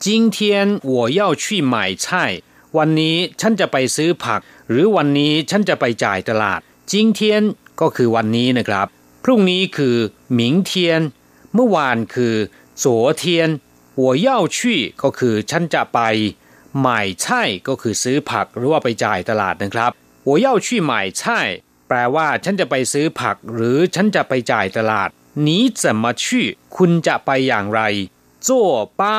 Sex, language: male, Thai